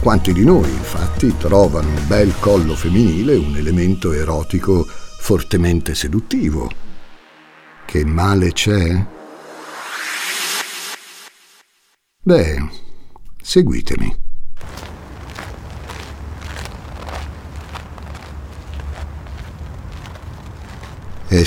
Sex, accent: male, native